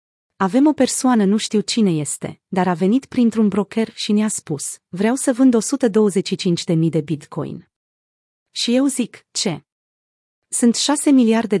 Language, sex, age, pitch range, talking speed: Romanian, female, 30-49, 175-225 Hz, 145 wpm